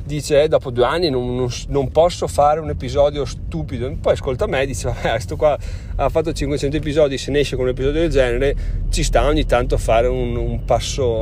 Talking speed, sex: 205 wpm, male